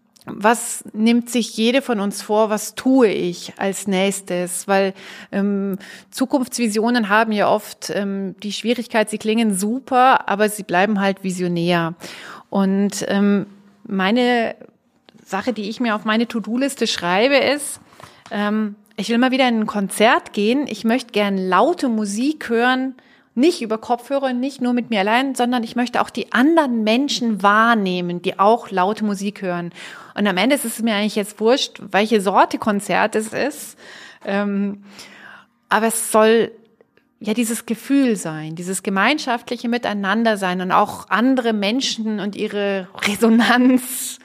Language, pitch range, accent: German, 195-240 Hz, German